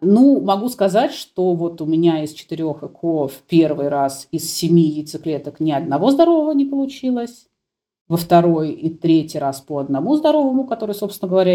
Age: 30-49